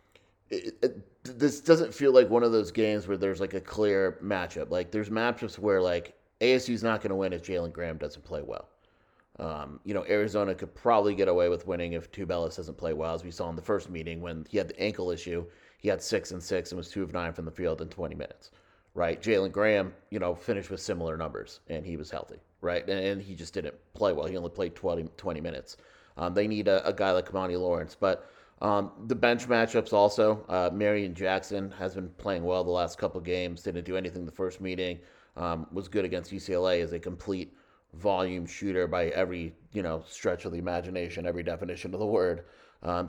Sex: male